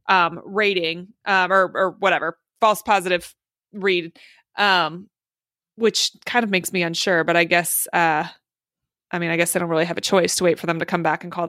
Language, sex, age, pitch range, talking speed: English, female, 20-39, 175-210 Hz, 205 wpm